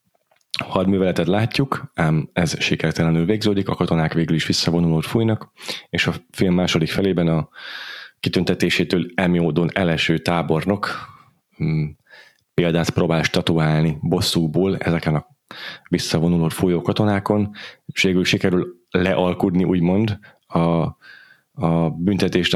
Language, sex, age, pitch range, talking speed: Hungarian, male, 30-49, 80-95 Hz, 105 wpm